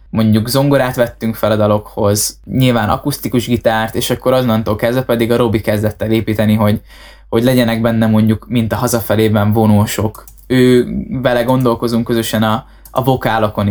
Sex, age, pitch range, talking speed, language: male, 10-29, 110-125 Hz, 155 wpm, Hungarian